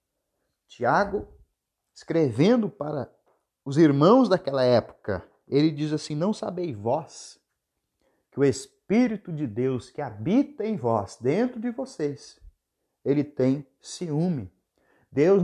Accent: Brazilian